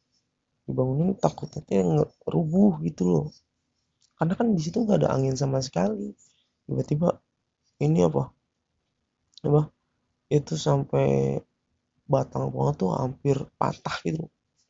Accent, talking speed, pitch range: native, 100 wpm, 120-155 Hz